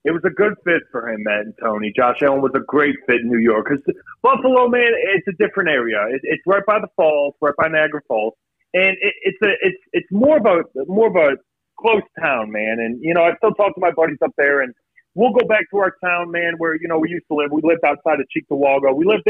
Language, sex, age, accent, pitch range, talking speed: English, male, 30-49, American, 140-210 Hz, 260 wpm